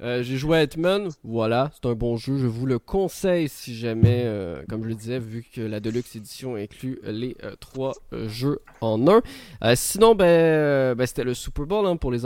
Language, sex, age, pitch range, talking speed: French, male, 20-39, 115-150 Hz, 220 wpm